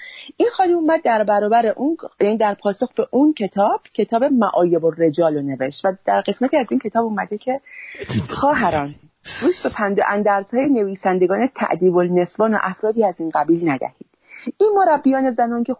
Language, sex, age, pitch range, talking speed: English, female, 40-59, 190-260 Hz, 170 wpm